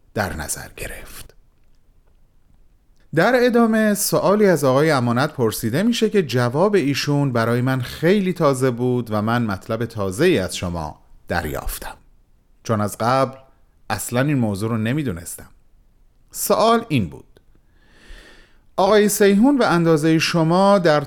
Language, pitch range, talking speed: Persian, 115-165 Hz, 120 wpm